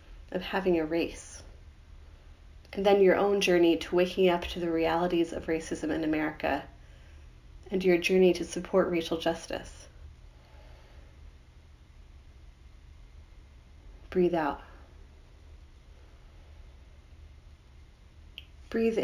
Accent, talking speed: American, 90 wpm